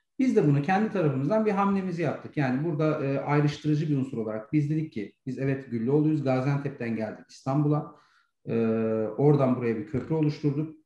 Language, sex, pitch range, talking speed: Turkish, male, 115-150 Hz, 165 wpm